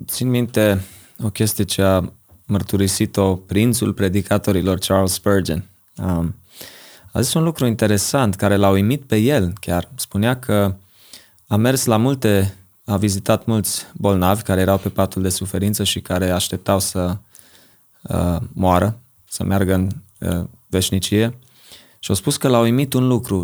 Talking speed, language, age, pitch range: 145 wpm, Romanian, 20-39, 95-110 Hz